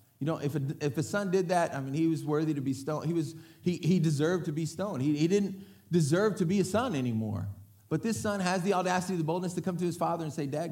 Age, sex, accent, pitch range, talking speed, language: 30-49, male, American, 120-175 Hz, 280 wpm, English